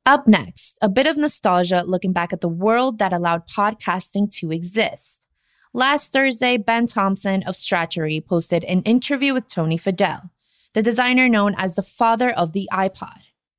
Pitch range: 175-235 Hz